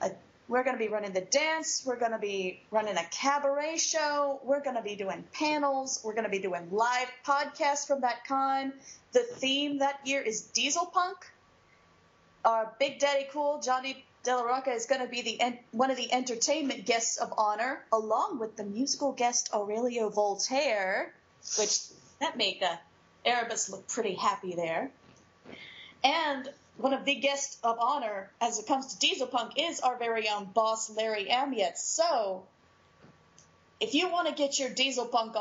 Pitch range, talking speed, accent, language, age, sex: 220-275 Hz, 180 wpm, American, English, 30-49, female